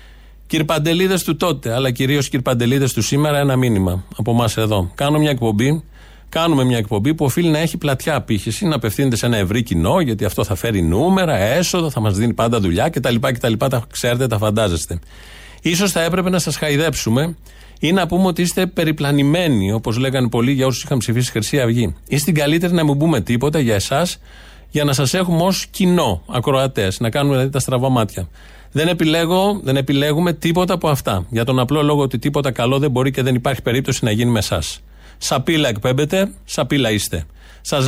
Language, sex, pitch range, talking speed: Greek, male, 115-160 Hz, 185 wpm